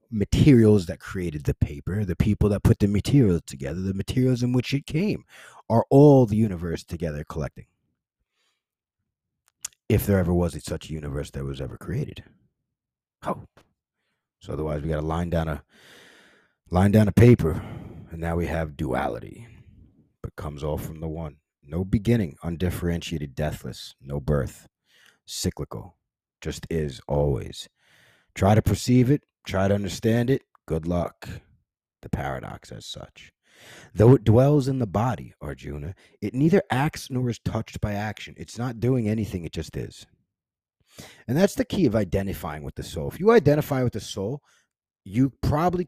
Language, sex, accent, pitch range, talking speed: English, male, American, 85-120 Hz, 160 wpm